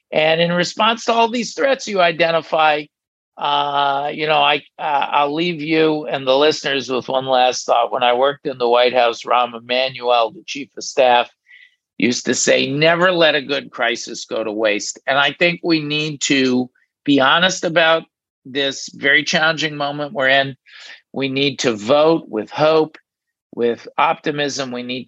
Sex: male